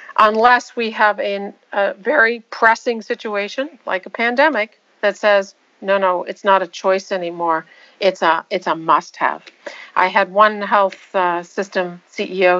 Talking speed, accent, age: 155 wpm, American, 50-69